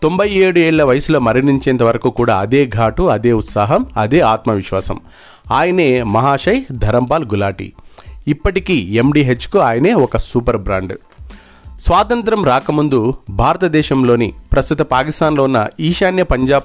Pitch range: 110-150 Hz